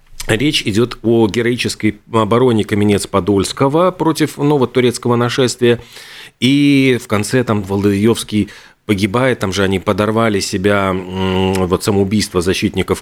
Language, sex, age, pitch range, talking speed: Russian, male, 40-59, 95-115 Hz, 115 wpm